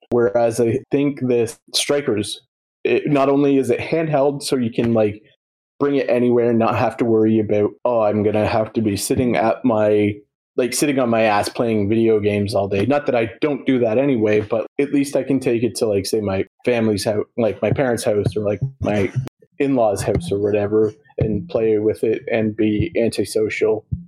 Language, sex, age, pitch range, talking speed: English, male, 20-39, 105-130 Hz, 200 wpm